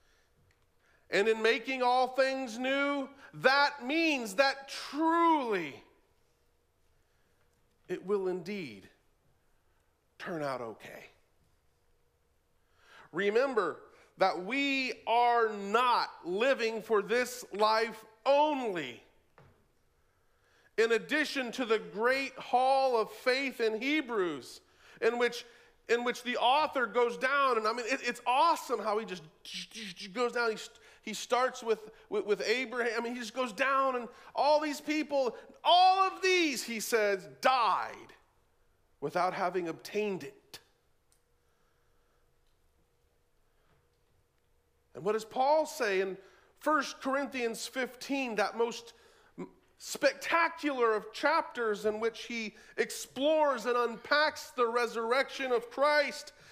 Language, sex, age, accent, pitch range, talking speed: English, male, 40-59, American, 220-285 Hz, 115 wpm